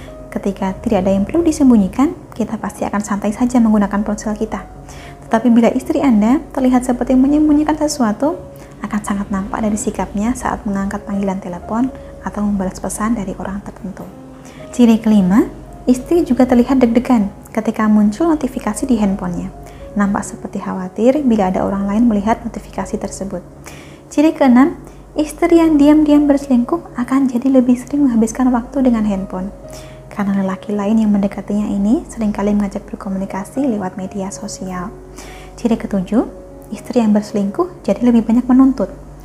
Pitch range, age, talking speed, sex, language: 205-270 Hz, 20-39, 140 wpm, female, Indonesian